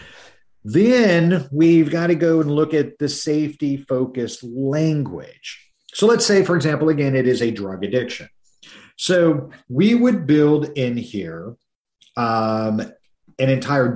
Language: English